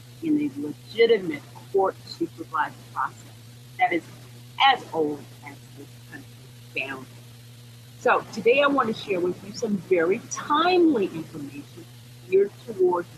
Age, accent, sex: 40-59, American, female